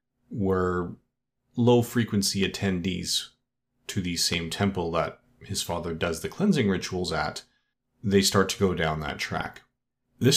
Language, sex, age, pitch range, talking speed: English, male, 30-49, 90-120 Hz, 135 wpm